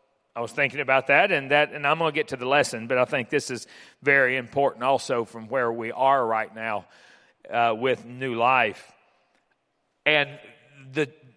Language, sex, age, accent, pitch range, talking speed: English, male, 40-59, American, 140-165 Hz, 185 wpm